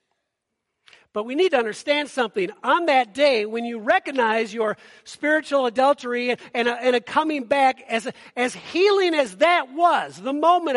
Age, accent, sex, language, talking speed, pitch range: 50-69, American, male, English, 155 wpm, 240-325 Hz